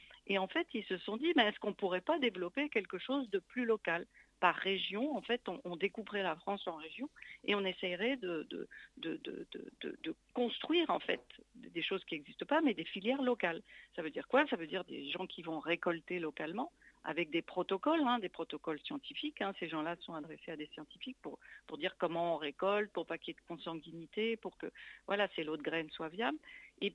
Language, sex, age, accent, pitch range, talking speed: French, female, 50-69, French, 180-255 Hz, 215 wpm